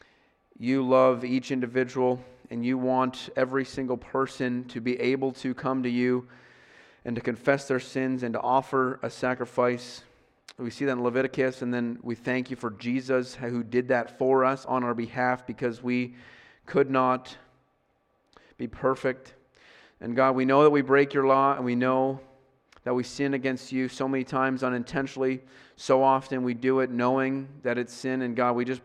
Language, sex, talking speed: English, male, 180 wpm